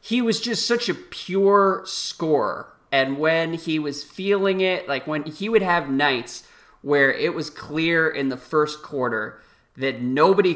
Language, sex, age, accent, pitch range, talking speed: English, male, 30-49, American, 130-165 Hz, 165 wpm